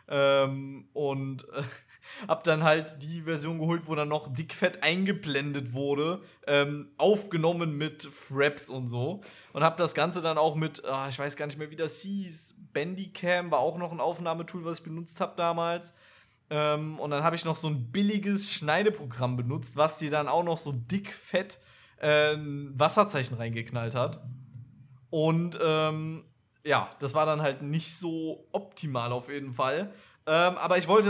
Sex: male